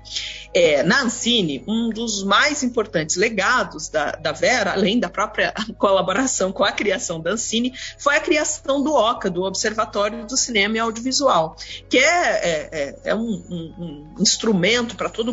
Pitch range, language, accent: 195-260 Hz, Portuguese, Brazilian